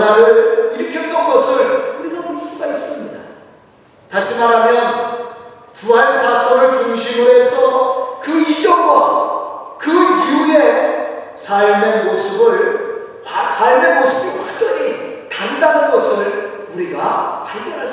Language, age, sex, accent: Korean, 40-59, male, native